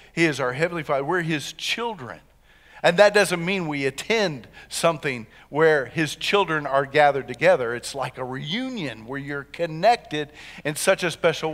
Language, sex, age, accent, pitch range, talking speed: English, male, 50-69, American, 140-180 Hz, 165 wpm